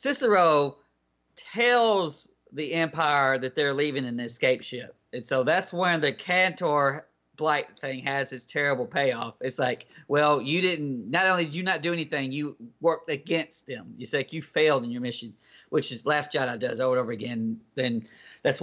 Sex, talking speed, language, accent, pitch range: male, 185 wpm, English, American, 125-165 Hz